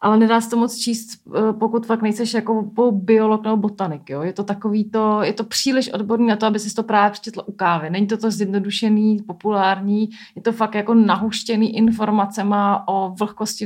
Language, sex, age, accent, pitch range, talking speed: Czech, female, 30-49, native, 200-220 Hz, 195 wpm